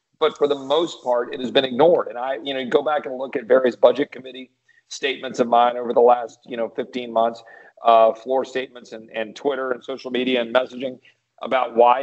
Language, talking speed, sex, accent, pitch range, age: English, 220 wpm, male, American, 120-145 Hz, 40-59